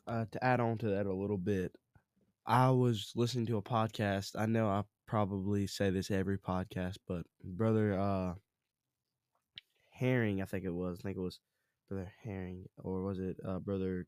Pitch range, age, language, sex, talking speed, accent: 100-115 Hz, 10-29, English, male, 180 wpm, American